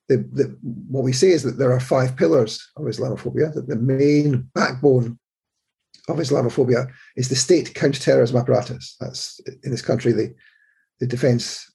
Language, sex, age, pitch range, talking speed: English, male, 50-69, 125-150 Hz, 160 wpm